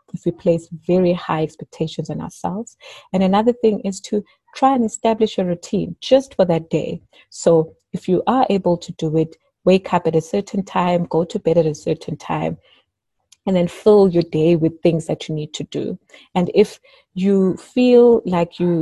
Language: English